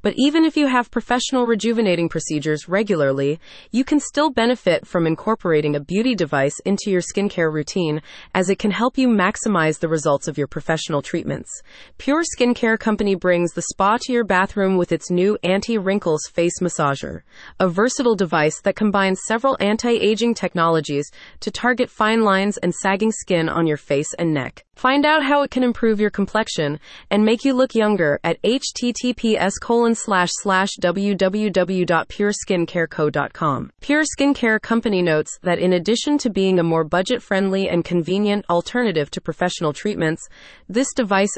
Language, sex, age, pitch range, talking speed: English, female, 30-49, 170-230 Hz, 155 wpm